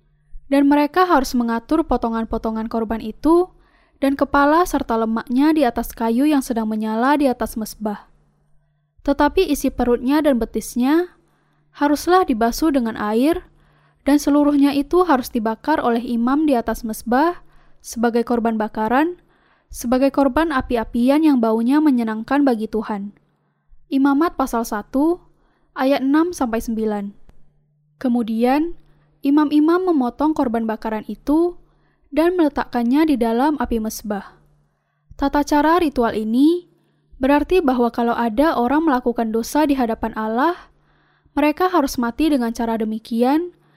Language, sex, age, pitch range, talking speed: Indonesian, female, 10-29, 225-295 Hz, 120 wpm